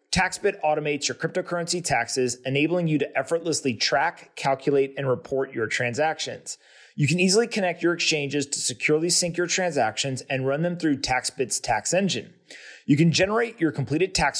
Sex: male